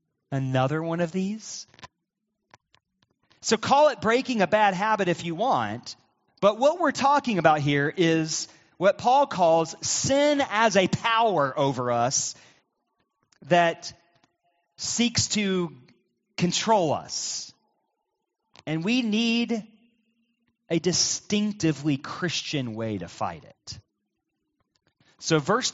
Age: 30-49